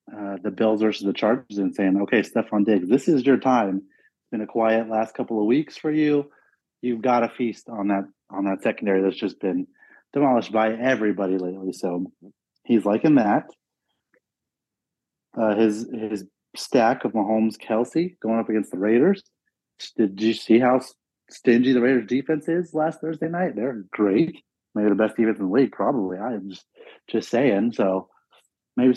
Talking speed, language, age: 180 wpm, English, 30-49